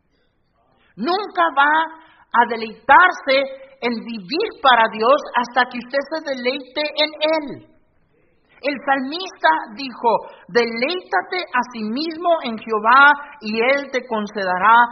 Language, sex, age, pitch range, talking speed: Spanish, male, 50-69, 220-280 Hz, 115 wpm